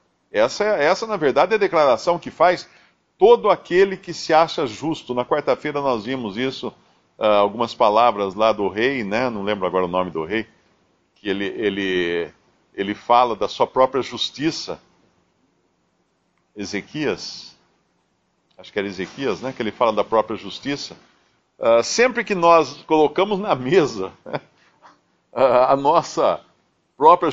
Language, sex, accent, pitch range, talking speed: Portuguese, male, Brazilian, 110-165 Hz, 140 wpm